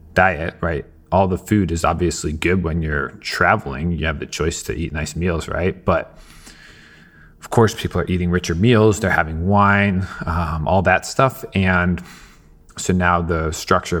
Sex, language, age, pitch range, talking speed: male, English, 30-49, 80-95 Hz, 170 wpm